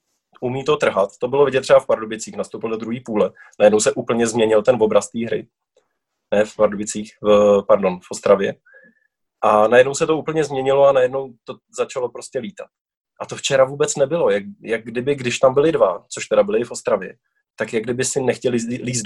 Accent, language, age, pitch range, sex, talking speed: native, Czech, 20-39, 125-175 Hz, male, 200 wpm